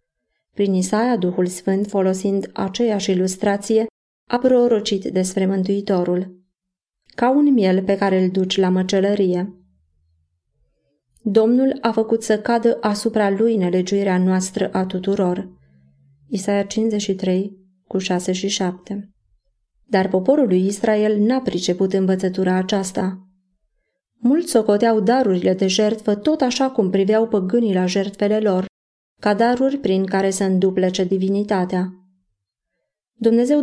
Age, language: 30-49, Romanian